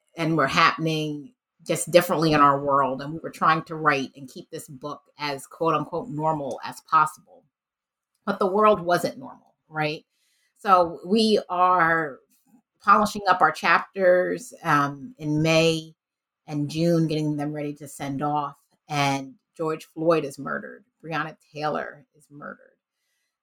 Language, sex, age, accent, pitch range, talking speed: English, female, 30-49, American, 150-180 Hz, 145 wpm